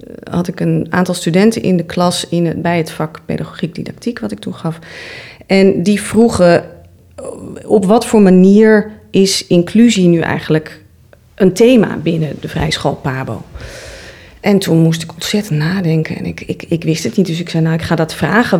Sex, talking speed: female, 175 wpm